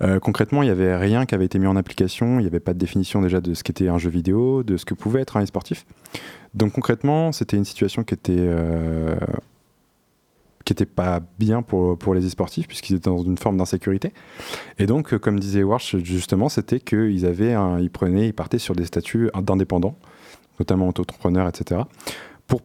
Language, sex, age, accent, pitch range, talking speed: French, male, 20-39, French, 90-110 Hz, 200 wpm